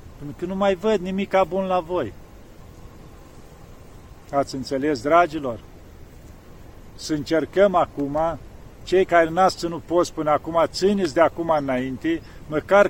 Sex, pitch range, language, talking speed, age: male, 140-180 Hz, Romanian, 125 wpm, 50-69